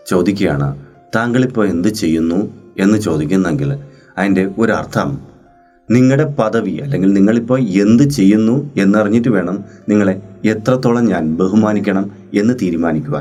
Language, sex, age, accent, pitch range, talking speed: Malayalam, male, 30-49, native, 95-130 Hz, 100 wpm